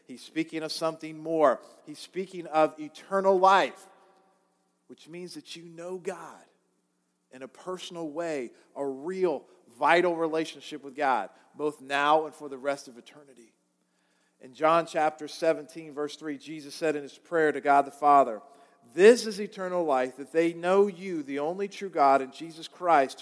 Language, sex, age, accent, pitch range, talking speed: English, male, 50-69, American, 145-180 Hz, 165 wpm